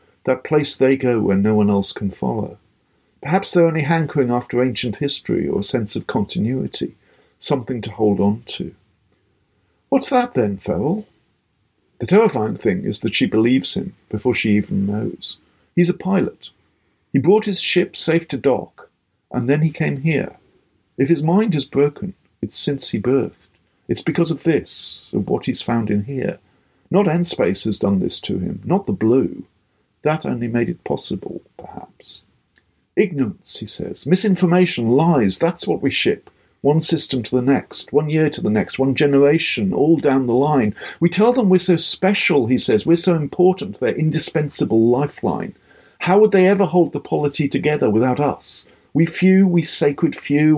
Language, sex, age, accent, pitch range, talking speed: English, male, 50-69, British, 125-175 Hz, 175 wpm